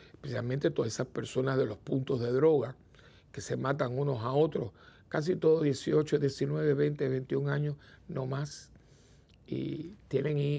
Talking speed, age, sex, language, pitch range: 145 wpm, 60-79, male, Spanish, 130-155 Hz